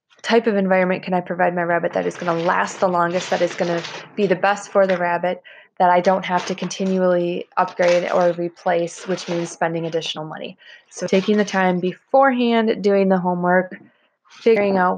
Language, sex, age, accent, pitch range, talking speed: English, female, 20-39, American, 175-190 Hz, 195 wpm